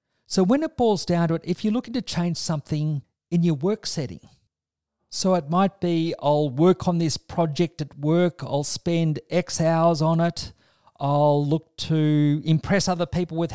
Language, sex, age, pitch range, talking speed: English, male, 50-69, 145-175 Hz, 180 wpm